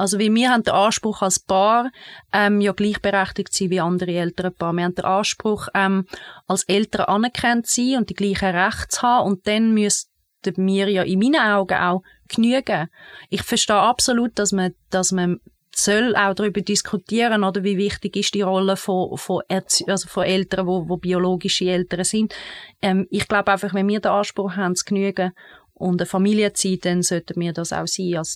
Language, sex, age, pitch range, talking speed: German, female, 30-49, 185-210 Hz, 195 wpm